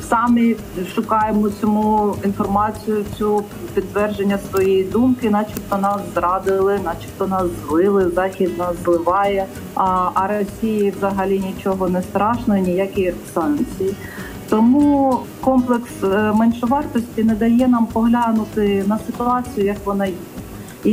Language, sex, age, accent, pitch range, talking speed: Ukrainian, female, 40-59, native, 190-225 Hz, 115 wpm